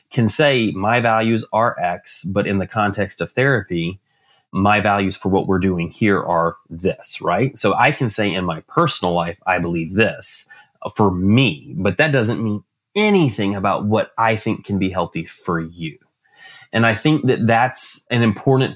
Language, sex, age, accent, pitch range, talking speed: English, male, 30-49, American, 90-120 Hz, 180 wpm